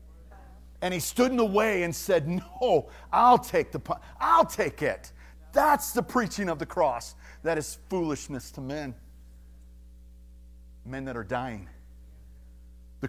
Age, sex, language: 40-59, male, English